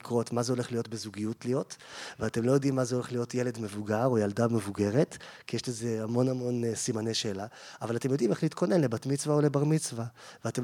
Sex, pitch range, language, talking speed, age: male, 115-140 Hz, Hebrew, 205 wpm, 30-49